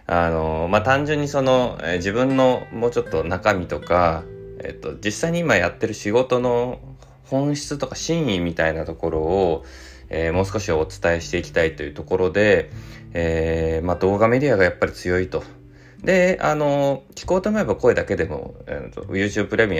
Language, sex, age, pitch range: Japanese, male, 20-39, 85-130 Hz